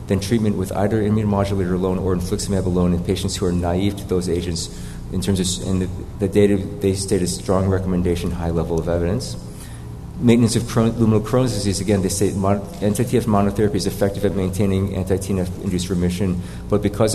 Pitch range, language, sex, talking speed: 90-105 Hz, English, male, 190 wpm